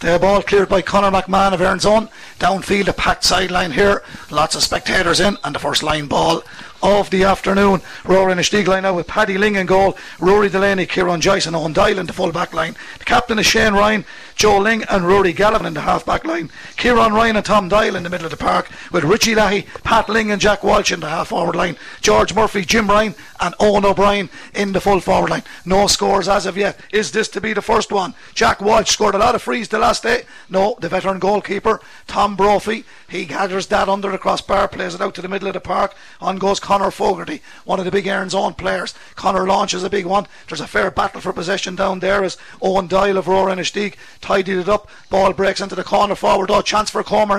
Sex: male